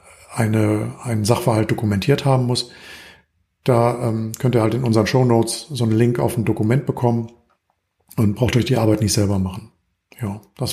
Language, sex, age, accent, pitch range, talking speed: German, male, 50-69, German, 115-140 Hz, 160 wpm